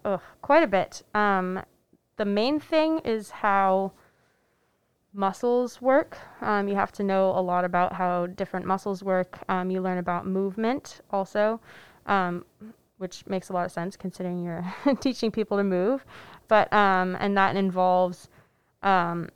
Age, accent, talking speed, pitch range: 20-39, American, 150 wpm, 185-210 Hz